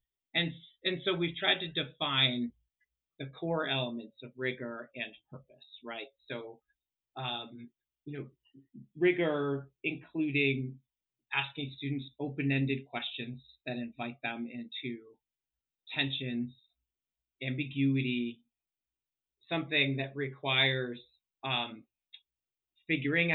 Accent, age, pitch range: American, 40-59, 125-150 Hz